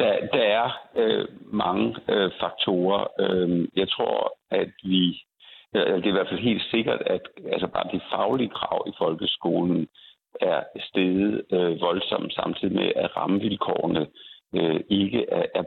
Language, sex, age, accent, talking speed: Danish, male, 60-79, native, 125 wpm